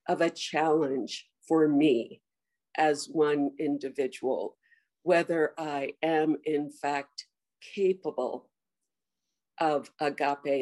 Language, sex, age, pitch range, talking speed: English, female, 50-69, 145-175 Hz, 90 wpm